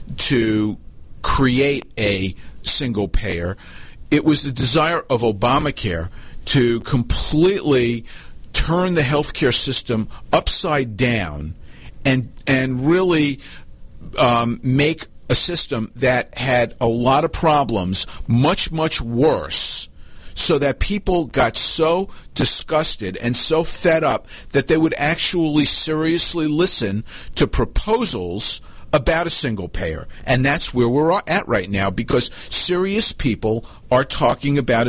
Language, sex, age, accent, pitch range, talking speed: English, male, 50-69, American, 110-155 Hz, 120 wpm